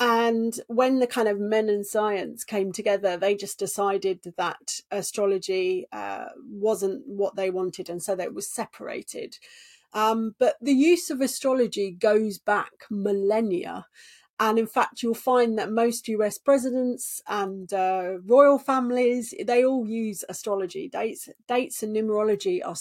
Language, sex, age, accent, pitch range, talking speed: English, female, 40-59, British, 200-270 Hz, 150 wpm